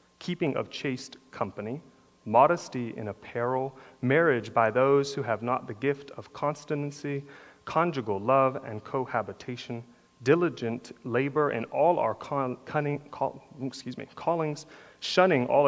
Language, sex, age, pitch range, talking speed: English, male, 30-49, 105-135 Hz, 130 wpm